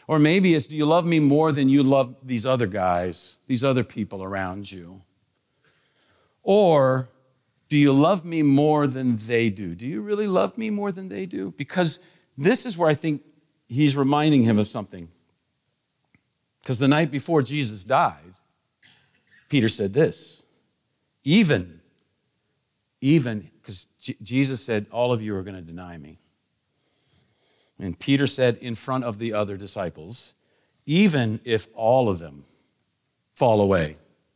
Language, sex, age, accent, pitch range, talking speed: English, male, 50-69, American, 100-140 Hz, 150 wpm